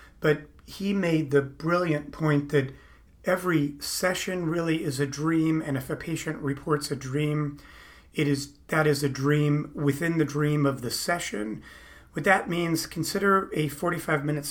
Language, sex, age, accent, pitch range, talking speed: English, male, 40-59, American, 140-160 Hz, 155 wpm